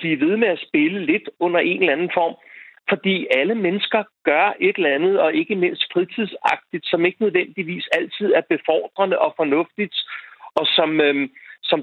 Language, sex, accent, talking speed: Danish, male, native, 165 wpm